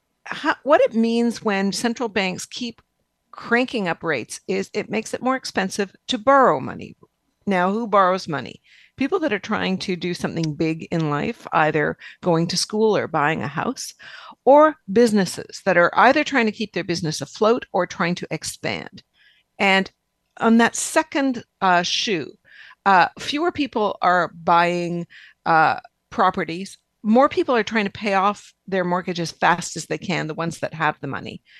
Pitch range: 175-230 Hz